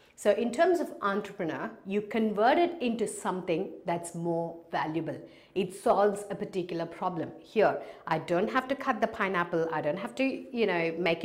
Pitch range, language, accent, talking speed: 165-210 Hz, English, Indian, 175 wpm